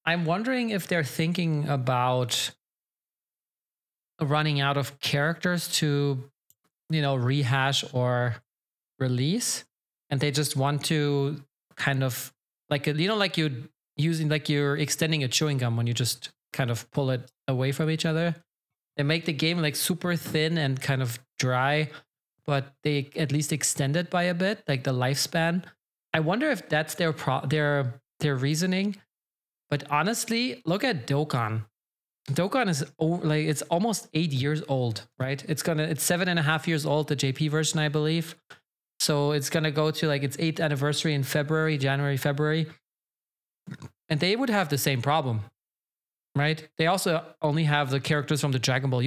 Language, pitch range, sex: English, 135-160 Hz, male